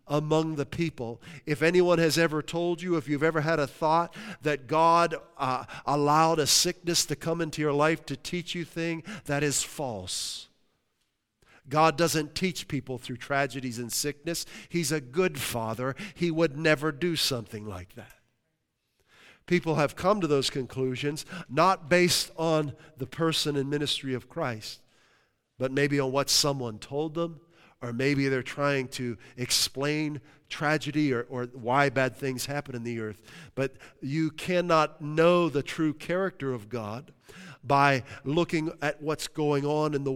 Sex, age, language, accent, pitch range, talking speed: male, 50-69, English, American, 125-160 Hz, 160 wpm